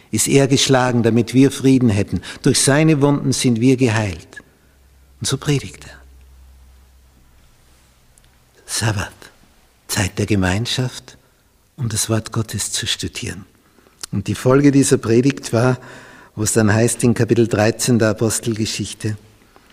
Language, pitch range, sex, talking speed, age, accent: German, 95-130 Hz, male, 130 wpm, 60-79, Austrian